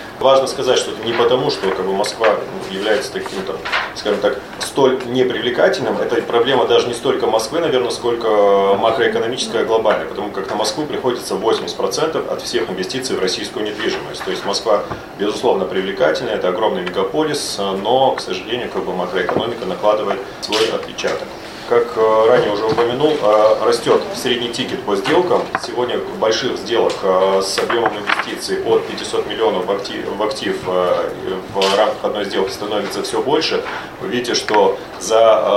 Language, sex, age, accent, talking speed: Russian, male, 30-49, native, 135 wpm